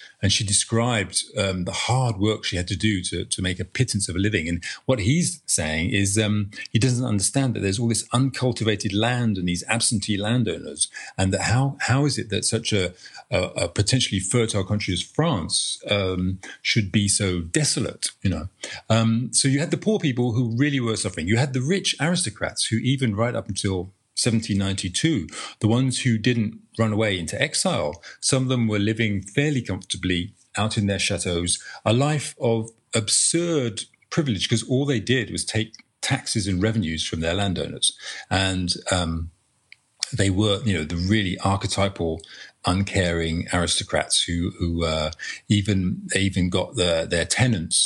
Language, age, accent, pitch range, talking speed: English, 40-59, British, 95-120 Hz, 175 wpm